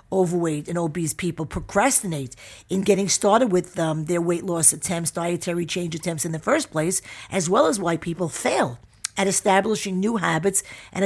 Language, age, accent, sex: English, 50-69, American, female